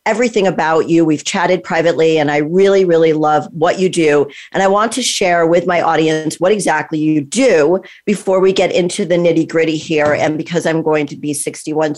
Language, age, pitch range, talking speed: English, 40-59, 150-185 Hz, 205 wpm